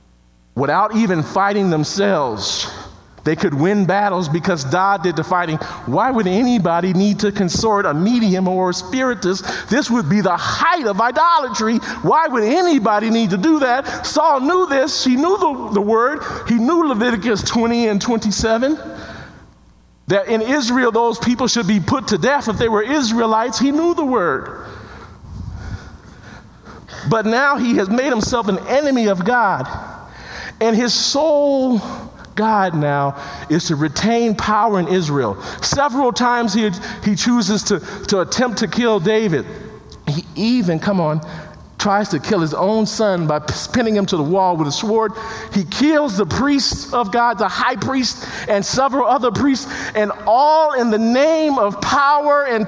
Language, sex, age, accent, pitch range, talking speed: English, male, 40-59, American, 170-250 Hz, 160 wpm